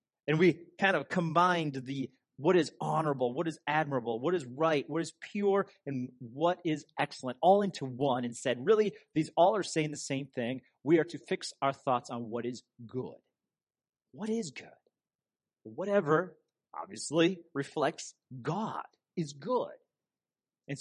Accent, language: American, English